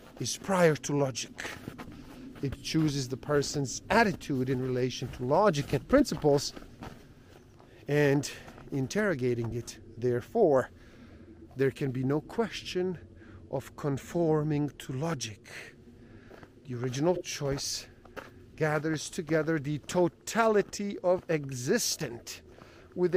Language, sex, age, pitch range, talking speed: English, male, 50-69, 130-185 Hz, 100 wpm